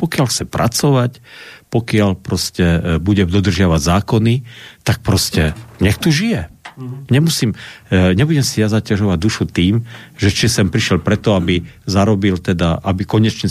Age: 50-69